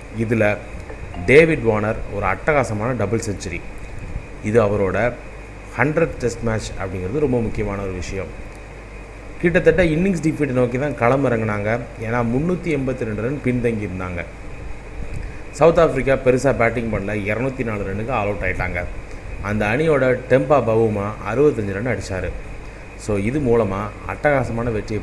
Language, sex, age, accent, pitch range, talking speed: Tamil, male, 30-49, native, 100-125 Hz, 125 wpm